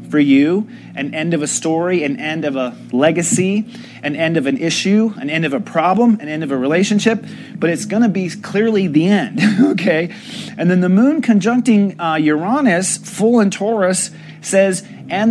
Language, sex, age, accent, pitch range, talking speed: English, male, 30-49, American, 155-210 Hz, 190 wpm